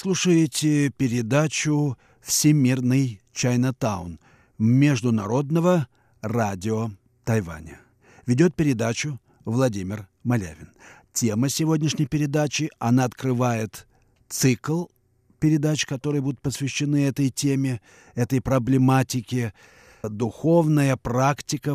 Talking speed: 75 wpm